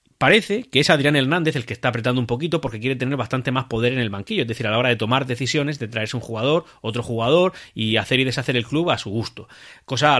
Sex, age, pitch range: male, 30-49, 115-135 Hz